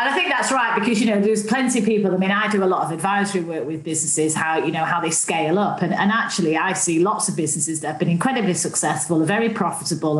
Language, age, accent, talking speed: English, 40-59, British, 270 wpm